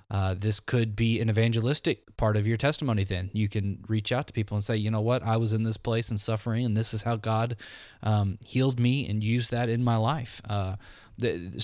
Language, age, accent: English, 20-39, American